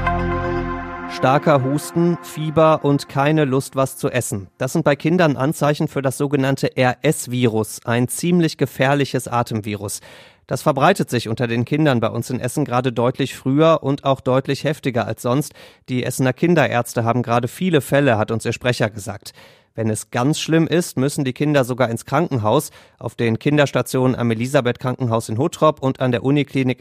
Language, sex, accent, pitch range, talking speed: German, male, German, 120-145 Hz, 170 wpm